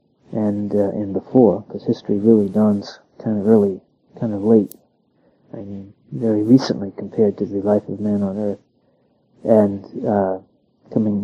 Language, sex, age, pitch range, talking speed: English, male, 40-59, 105-115 Hz, 155 wpm